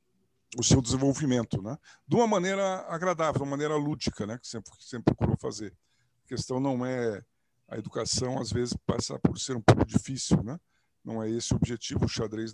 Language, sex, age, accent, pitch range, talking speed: Portuguese, male, 50-69, Brazilian, 105-130 Hz, 190 wpm